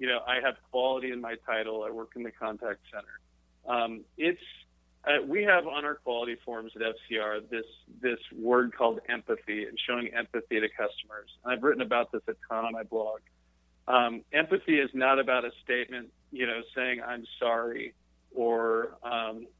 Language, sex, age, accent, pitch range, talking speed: English, male, 40-59, American, 110-125 Hz, 180 wpm